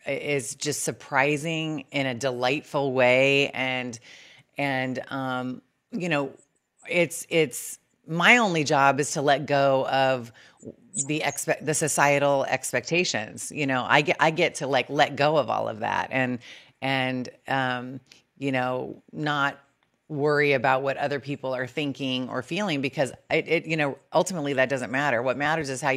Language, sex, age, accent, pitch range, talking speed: English, female, 30-49, American, 130-160 Hz, 155 wpm